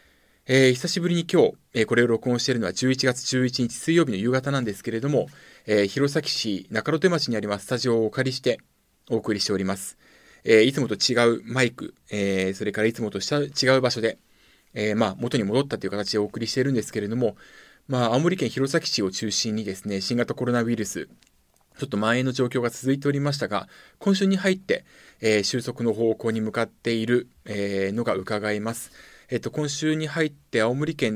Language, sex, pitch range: Japanese, male, 110-145 Hz